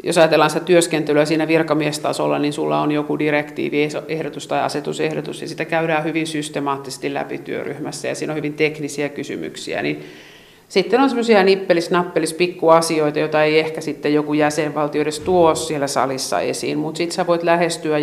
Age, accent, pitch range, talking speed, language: 50-69, native, 145-170 Hz, 150 wpm, Finnish